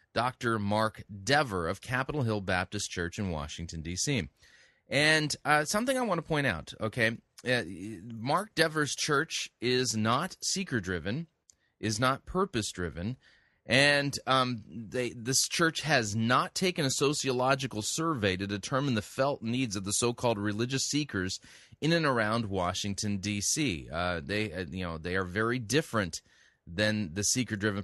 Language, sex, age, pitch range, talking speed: English, male, 30-49, 100-140 Hz, 145 wpm